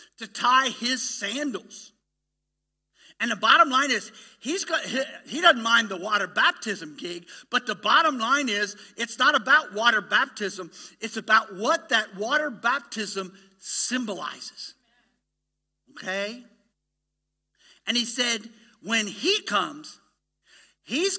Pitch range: 210-300 Hz